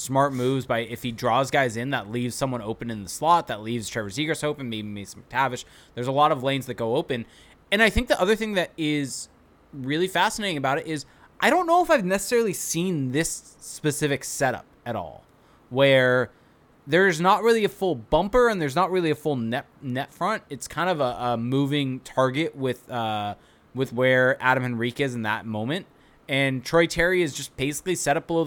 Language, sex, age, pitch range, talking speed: English, male, 20-39, 125-170 Hz, 205 wpm